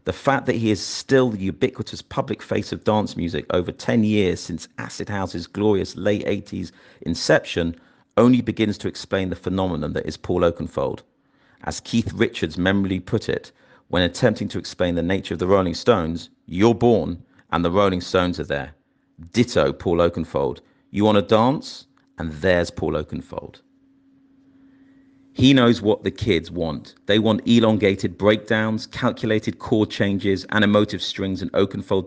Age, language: 40-59, English